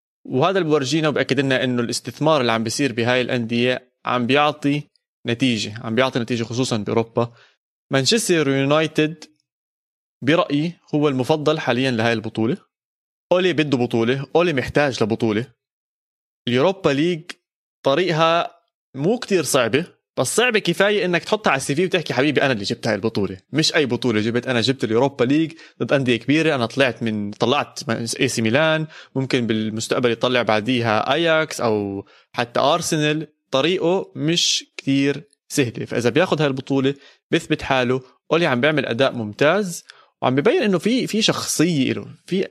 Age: 20-39